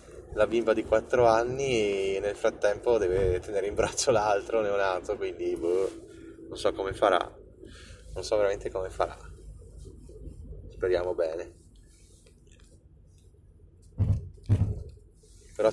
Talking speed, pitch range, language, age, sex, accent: 105 wpm, 85-145 Hz, Italian, 20-39, male, native